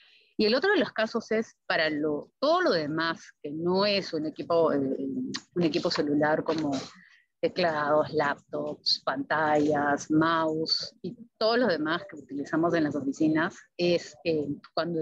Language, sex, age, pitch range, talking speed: Spanish, female, 30-49, 155-190 Hz, 150 wpm